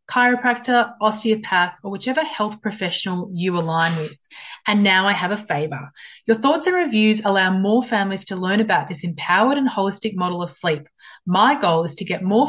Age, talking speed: 30-49, 185 wpm